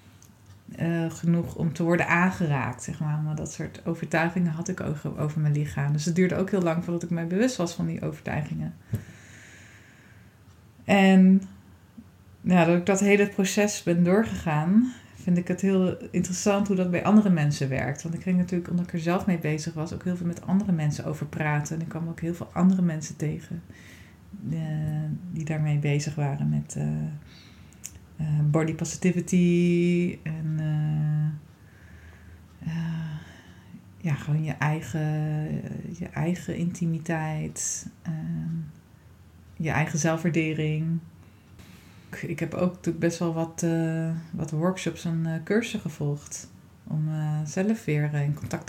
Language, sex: Dutch, female